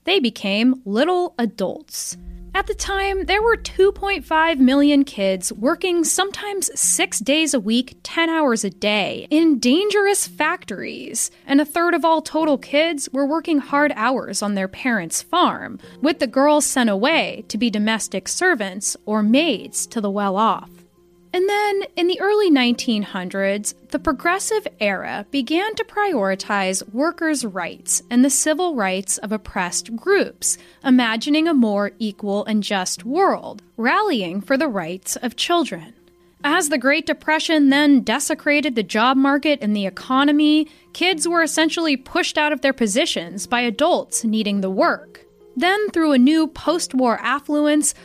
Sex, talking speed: female, 150 wpm